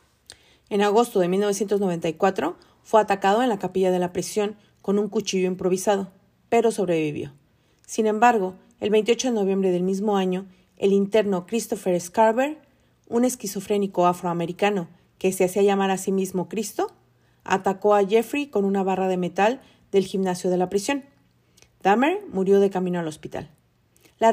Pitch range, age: 185-220 Hz, 40-59